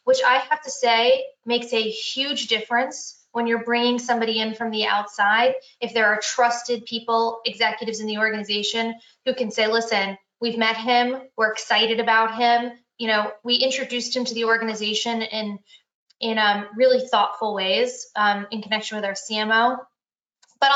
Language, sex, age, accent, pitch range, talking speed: English, female, 20-39, American, 215-245 Hz, 170 wpm